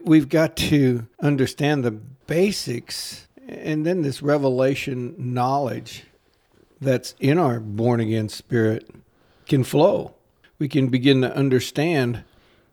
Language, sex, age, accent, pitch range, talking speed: English, male, 60-79, American, 125-160 Hz, 110 wpm